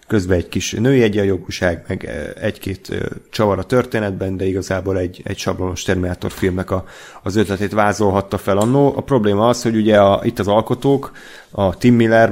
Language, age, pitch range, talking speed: Hungarian, 30-49, 95-110 Hz, 175 wpm